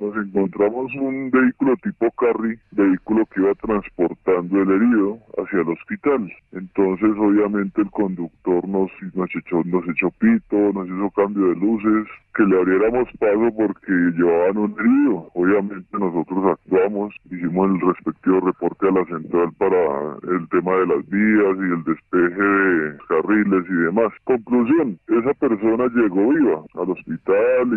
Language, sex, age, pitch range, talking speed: Spanish, female, 20-39, 95-110 Hz, 145 wpm